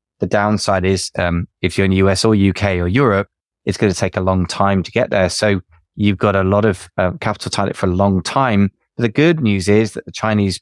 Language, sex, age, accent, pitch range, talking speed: English, male, 20-39, British, 90-110 Hz, 250 wpm